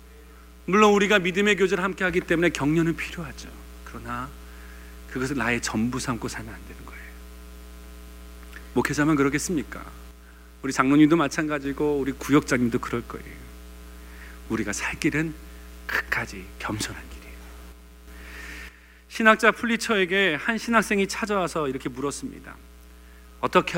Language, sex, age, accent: Korean, male, 40-59, native